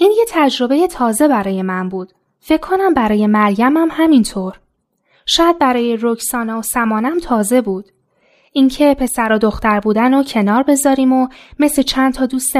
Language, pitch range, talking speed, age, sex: Persian, 215-265 Hz, 160 wpm, 10-29, female